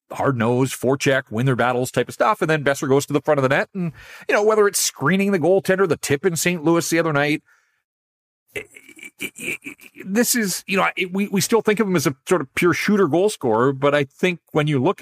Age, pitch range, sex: 40-59, 125-175 Hz, male